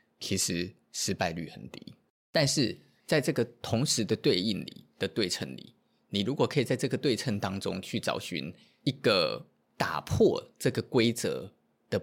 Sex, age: male, 20-39